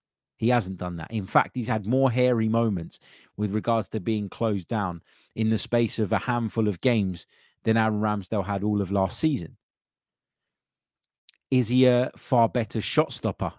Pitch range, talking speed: 105-140 Hz, 175 wpm